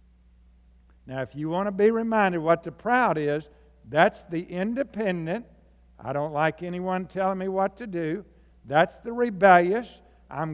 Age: 60-79